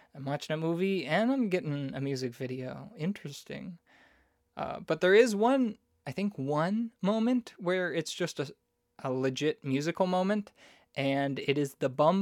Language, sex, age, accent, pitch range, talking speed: English, male, 20-39, American, 130-165 Hz, 160 wpm